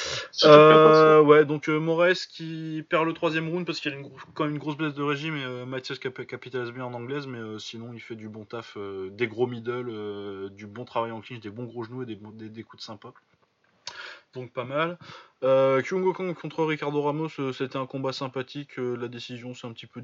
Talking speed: 240 wpm